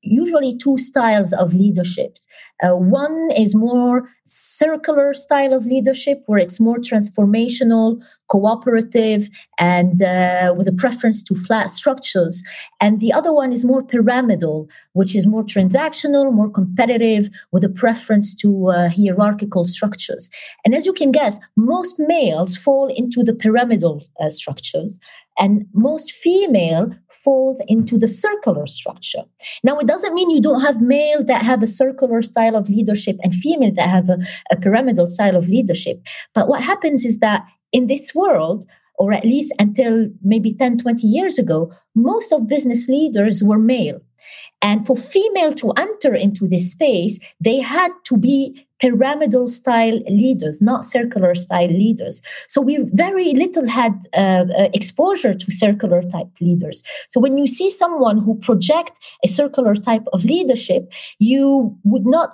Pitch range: 200-275 Hz